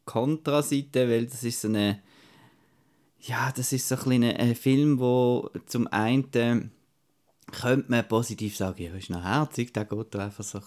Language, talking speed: German, 170 wpm